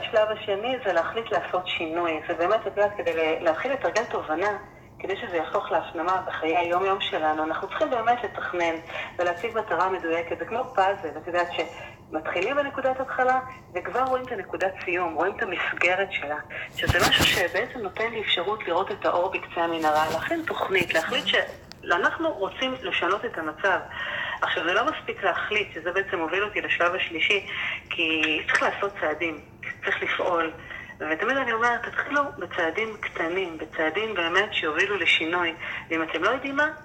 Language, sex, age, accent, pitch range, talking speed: Hebrew, female, 40-59, native, 175-245 Hz, 145 wpm